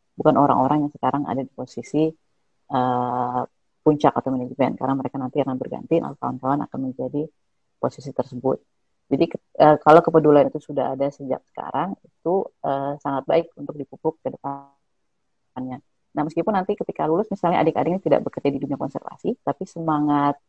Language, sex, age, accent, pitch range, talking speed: Indonesian, female, 30-49, native, 135-155 Hz, 160 wpm